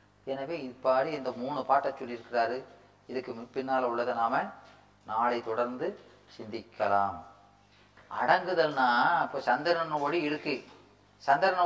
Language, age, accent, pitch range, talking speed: Tamil, 30-49, native, 125-160 Hz, 105 wpm